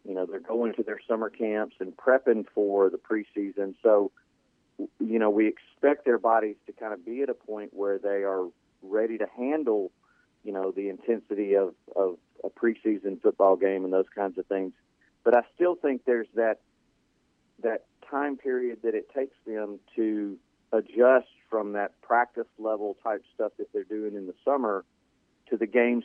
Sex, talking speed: male, 180 wpm